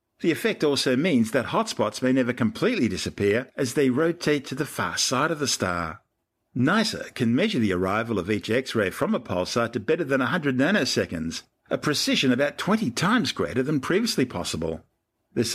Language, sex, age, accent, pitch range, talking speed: English, male, 50-69, Australian, 100-145 Hz, 180 wpm